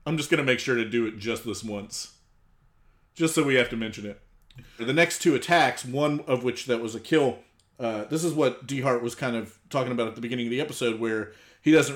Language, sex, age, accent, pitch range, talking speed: English, male, 30-49, American, 115-140 Hz, 245 wpm